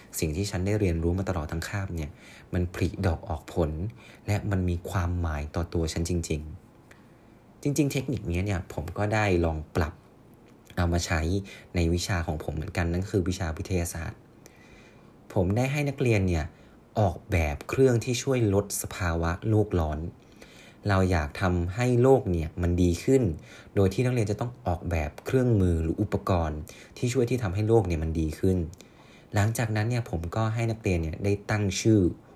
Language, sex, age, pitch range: Thai, male, 20-39, 85-110 Hz